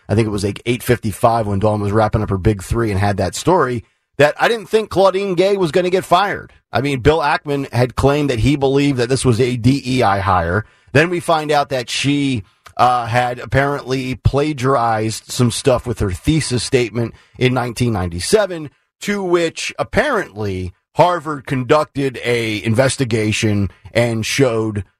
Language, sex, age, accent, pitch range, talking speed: English, male, 40-59, American, 110-165 Hz, 170 wpm